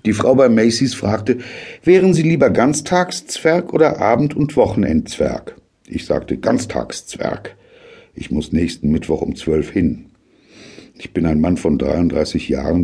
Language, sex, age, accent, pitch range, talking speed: German, male, 60-79, German, 85-140 Hz, 140 wpm